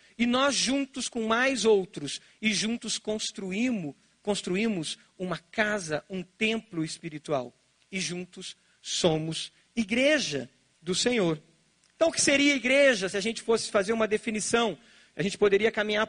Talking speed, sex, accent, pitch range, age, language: 135 wpm, male, Brazilian, 195-270 Hz, 40-59, Portuguese